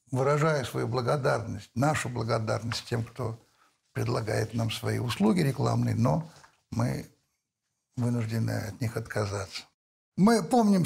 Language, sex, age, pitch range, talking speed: Russian, male, 60-79, 125-205 Hz, 110 wpm